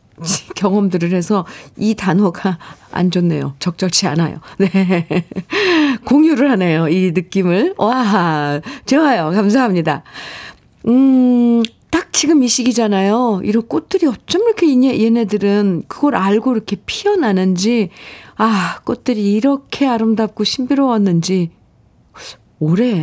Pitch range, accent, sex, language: 180-250 Hz, native, female, Korean